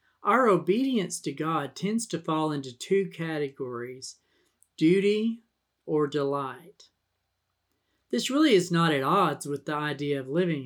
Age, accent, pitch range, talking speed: 40-59, American, 145-195 Hz, 135 wpm